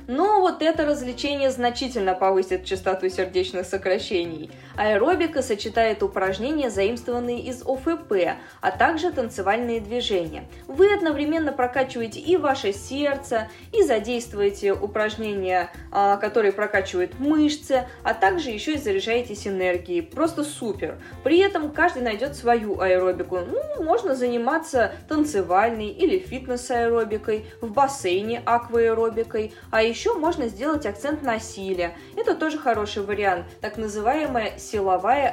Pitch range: 205-295 Hz